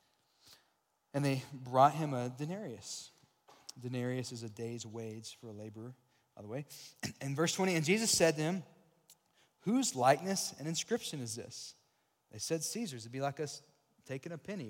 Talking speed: 165 wpm